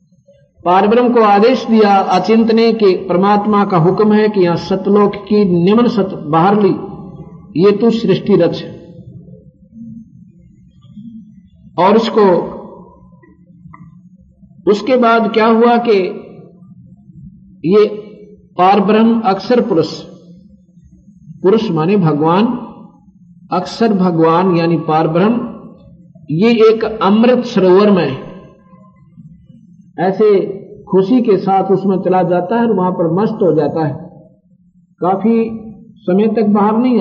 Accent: native